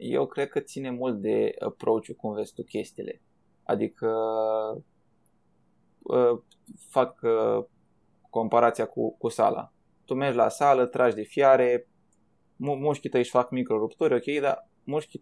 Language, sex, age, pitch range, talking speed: Romanian, male, 20-39, 125-150 Hz, 140 wpm